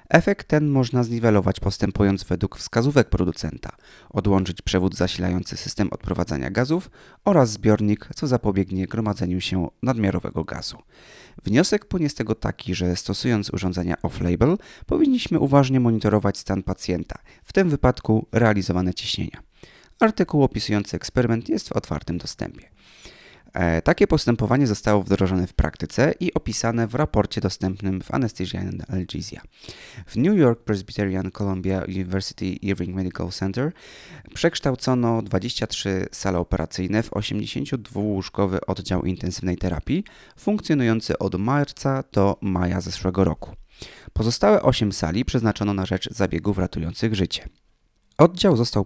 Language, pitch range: Polish, 90-120 Hz